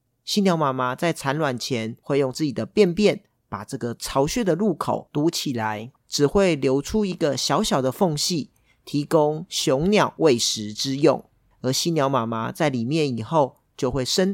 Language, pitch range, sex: Chinese, 125-170 Hz, male